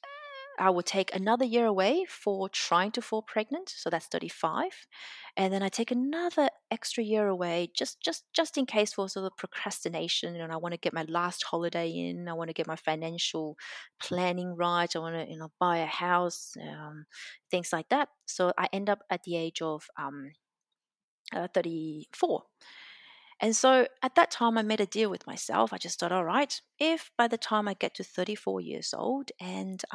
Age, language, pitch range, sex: 30-49, English, 170-240 Hz, female